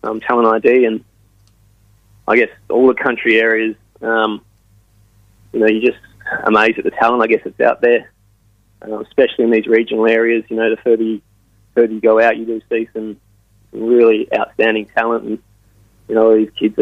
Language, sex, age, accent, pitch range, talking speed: English, male, 20-39, Australian, 105-115 Hz, 180 wpm